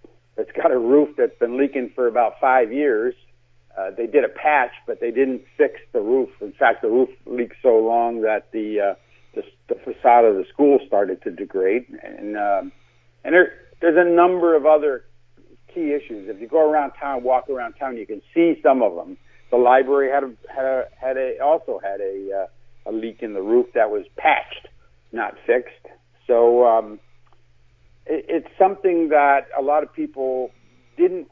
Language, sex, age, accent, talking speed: English, male, 60-79, American, 185 wpm